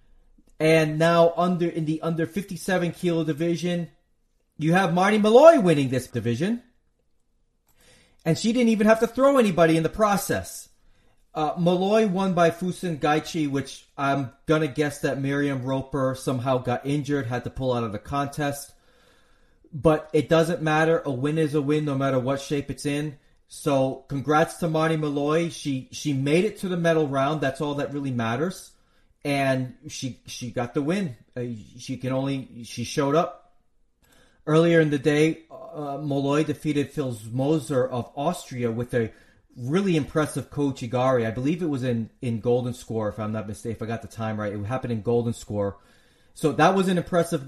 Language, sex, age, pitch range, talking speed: English, male, 30-49, 125-160 Hz, 180 wpm